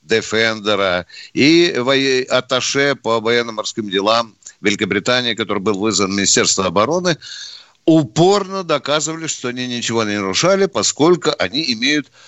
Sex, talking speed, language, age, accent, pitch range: male, 110 wpm, Russian, 60-79, native, 120-165 Hz